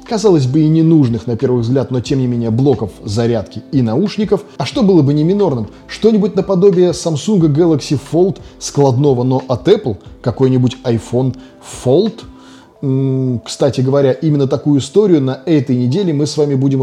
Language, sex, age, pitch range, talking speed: Russian, male, 20-39, 120-155 Hz, 160 wpm